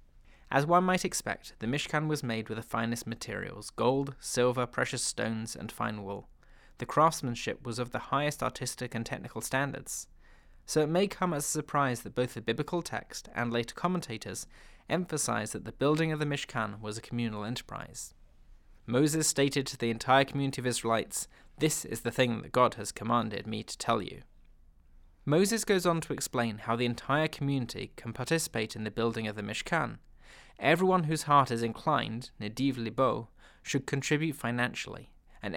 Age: 20-39